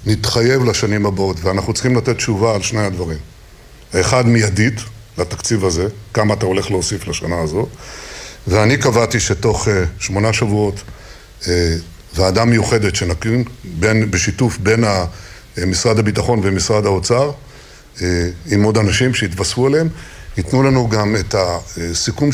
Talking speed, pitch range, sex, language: 125 wpm, 90-115 Hz, male, Hebrew